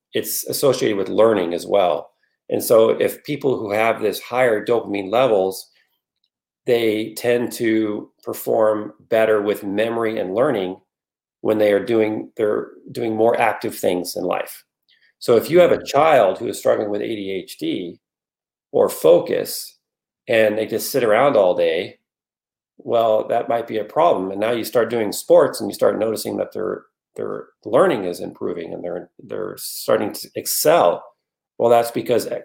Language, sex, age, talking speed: English, male, 40-59, 160 wpm